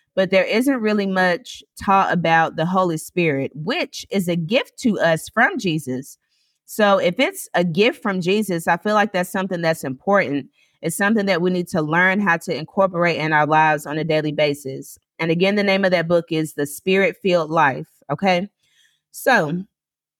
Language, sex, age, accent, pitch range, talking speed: English, female, 30-49, American, 160-210 Hz, 185 wpm